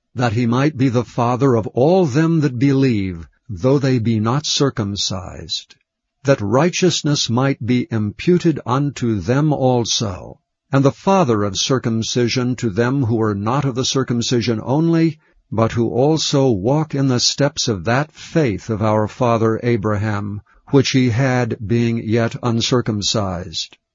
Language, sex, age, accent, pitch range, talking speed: English, male, 60-79, American, 115-140 Hz, 145 wpm